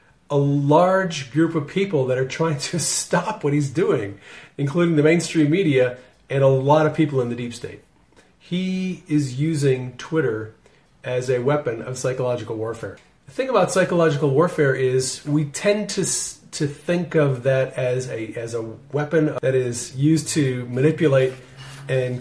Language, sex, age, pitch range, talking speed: English, male, 40-59, 130-160 Hz, 160 wpm